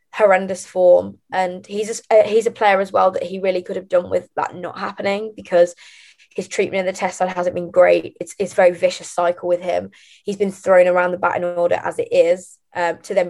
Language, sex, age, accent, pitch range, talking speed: English, female, 20-39, British, 180-200 Hz, 230 wpm